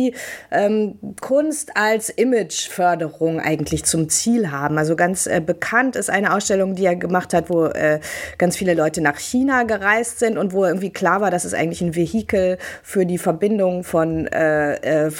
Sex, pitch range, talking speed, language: female, 175-230 Hz, 175 wpm, German